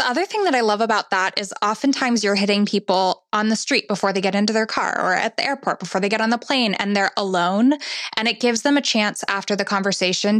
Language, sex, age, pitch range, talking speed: English, female, 10-29, 195-225 Hz, 255 wpm